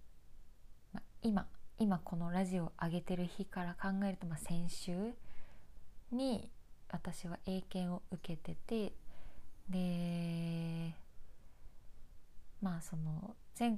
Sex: female